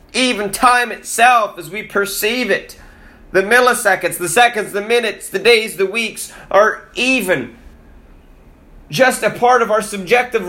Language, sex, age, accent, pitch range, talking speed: English, male, 30-49, American, 195-250 Hz, 145 wpm